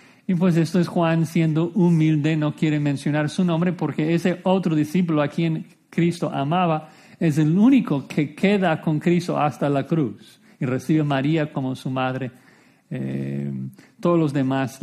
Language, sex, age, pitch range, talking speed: Spanish, male, 50-69, 140-170 Hz, 165 wpm